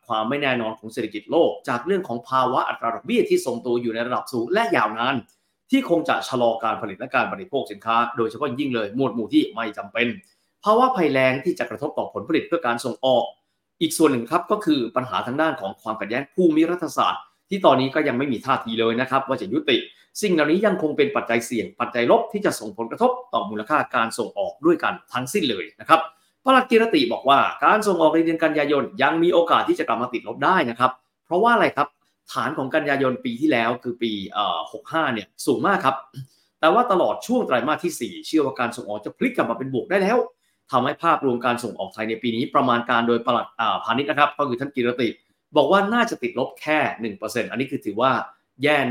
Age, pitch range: 30-49, 120-170 Hz